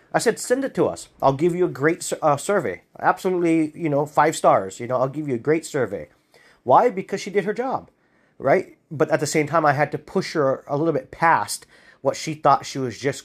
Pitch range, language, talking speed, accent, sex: 130-165 Hz, English, 240 wpm, American, male